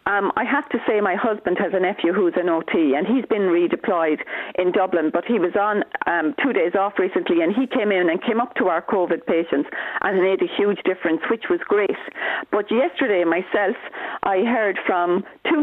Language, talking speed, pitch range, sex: English, 210 wpm, 180-245 Hz, female